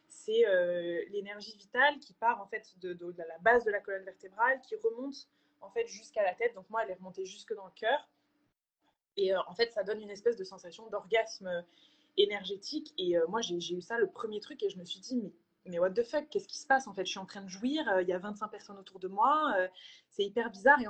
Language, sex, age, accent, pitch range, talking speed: French, female, 20-39, French, 190-270 Hz, 260 wpm